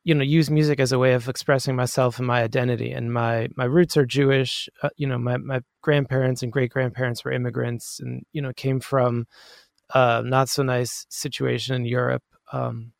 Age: 20-39